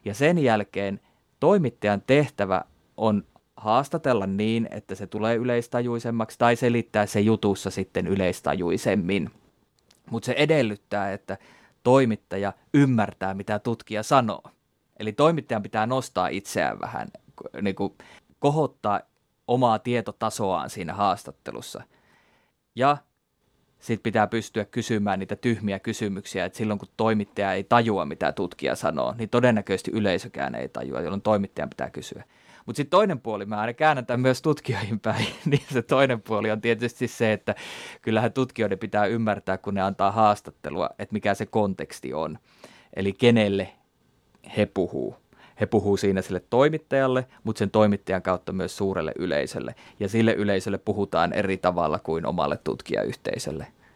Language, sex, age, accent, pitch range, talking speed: Finnish, male, 30-49, native, 100-120 Hz, 135 wpm